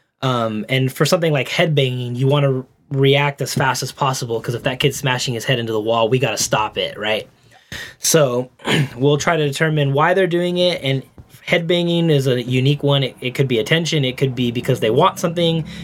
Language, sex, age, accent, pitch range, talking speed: English, male, 20-39, American, 125-160 Hz, 215 wpm